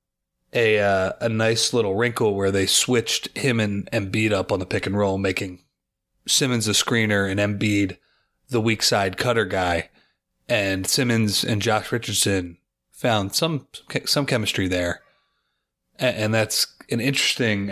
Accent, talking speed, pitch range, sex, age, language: American, 150 wpm, 95-120 Hz, male, 30-49, English